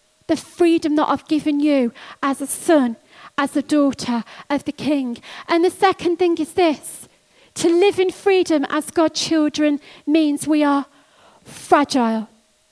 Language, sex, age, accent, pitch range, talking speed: English, female, 40-59, British, 275-350 Hz, 150 wpm